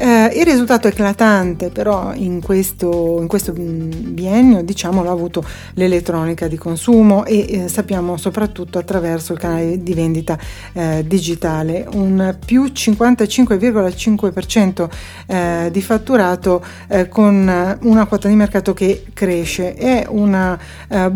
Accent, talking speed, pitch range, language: native, 125 wpm, 180-215 Hz, Italian